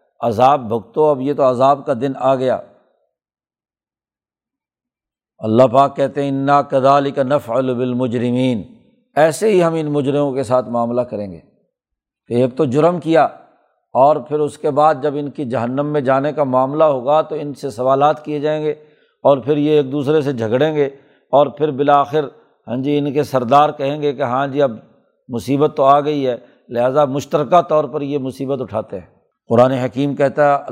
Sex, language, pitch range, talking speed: male, Urdu, 130-150 Hz, 180 wpm